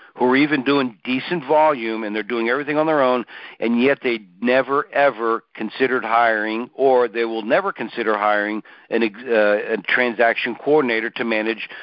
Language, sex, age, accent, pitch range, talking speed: English, male, 60-79, American, 115-135 Hz, 160 wpm